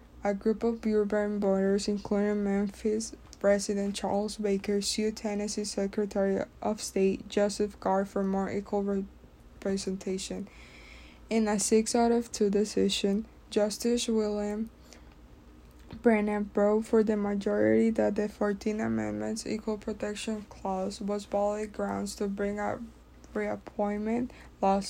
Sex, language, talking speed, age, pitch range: female, English, 120 wpm, 10-29, 195-220 Hz